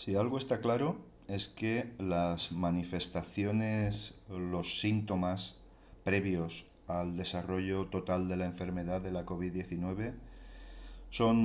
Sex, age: male, 40-59